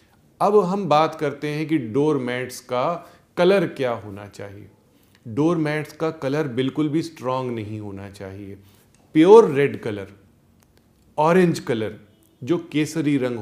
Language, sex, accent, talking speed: Hindi, male, native, 130 wpm